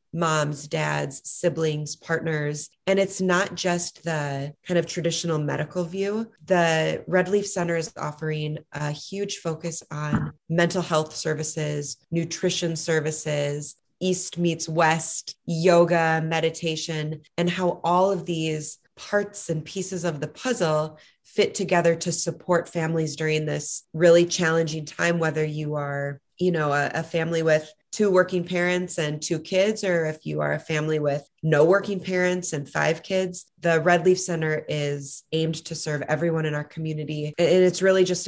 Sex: female